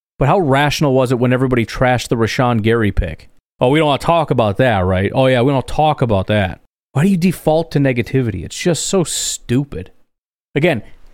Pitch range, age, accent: 115-160 Hz, 30-49, American